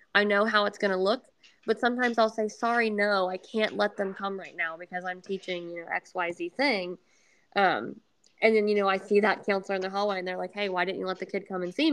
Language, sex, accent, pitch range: English, female, American, 190-225 Hz